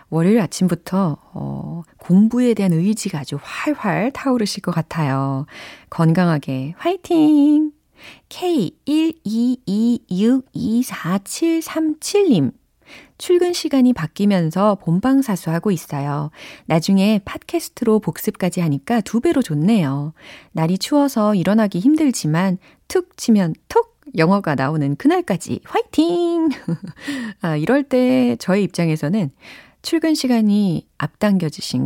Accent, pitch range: native, 160-265 Hz